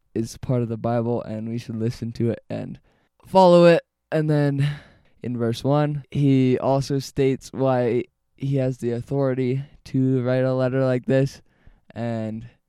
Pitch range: 115-130 Hz